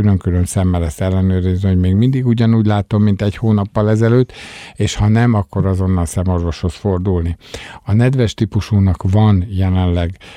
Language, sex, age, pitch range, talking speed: Hungarian, male, 50-69, 90-105 Hz, 145 wpm